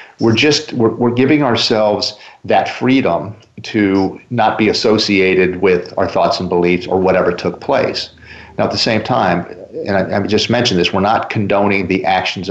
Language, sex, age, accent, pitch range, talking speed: English, male, 50-69, American, 95-115 Hz, 180 wpm